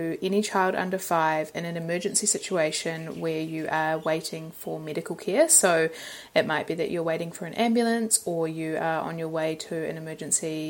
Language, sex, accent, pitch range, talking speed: English, female, Australian, 160-195 Hz, 190 wpm